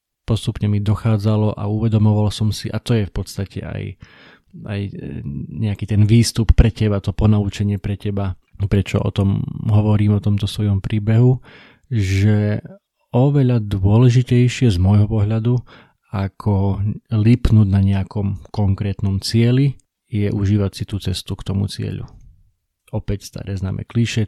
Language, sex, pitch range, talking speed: Slovak, male, 100-115 Hz, 135 wpm